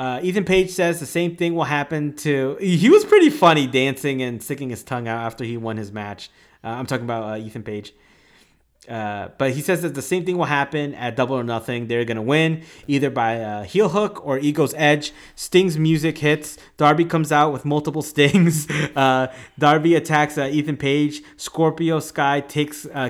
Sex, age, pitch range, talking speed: male, 30-49, 125-160 Hz, 200 wpm